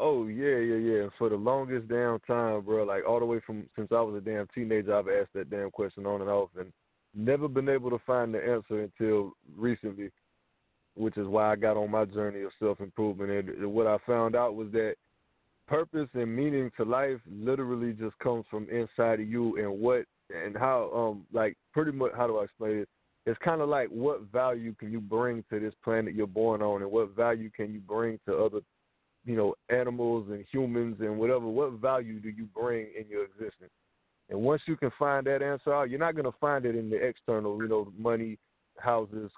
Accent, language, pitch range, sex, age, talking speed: American, English, 105-120 Hz, male, 20-39, 215 wpm